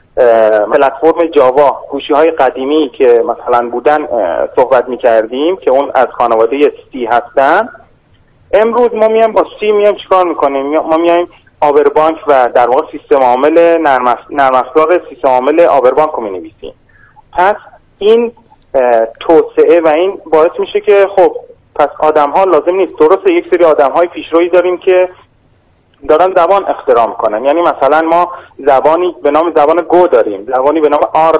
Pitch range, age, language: 140-210 Hz, 30-49, Persian